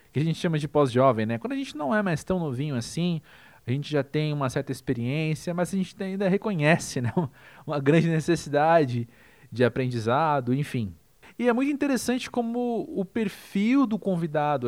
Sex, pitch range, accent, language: male, 145-210 Hz, Brazilian, Portuguese